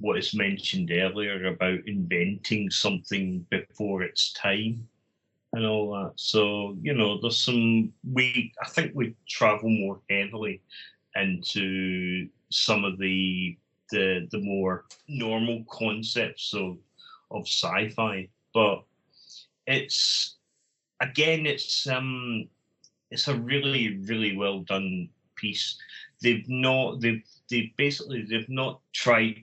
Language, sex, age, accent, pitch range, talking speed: English, male, 30-49, British, 100-120 Hz, 120 wpm